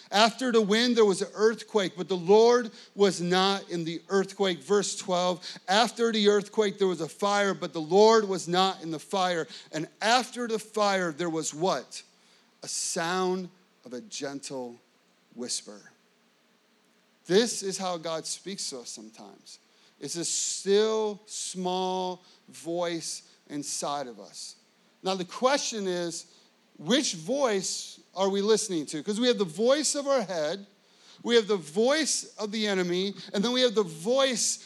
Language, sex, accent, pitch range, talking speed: English, male, American, 185-220 Hz, 160 wpm